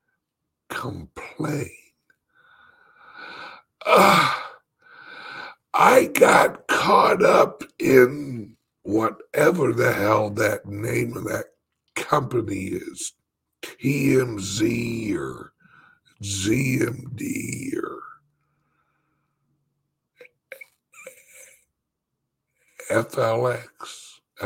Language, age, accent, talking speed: English, 60-79, American, 45 wpm